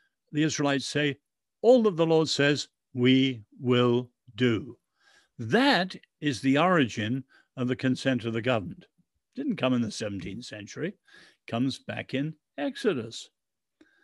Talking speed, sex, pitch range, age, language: 135 wpm, male, 125-160 Hz, 60-79, English